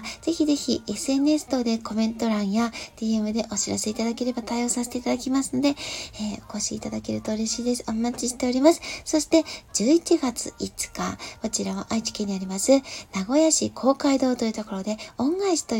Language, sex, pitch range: Japanese, female, 215-285 Hz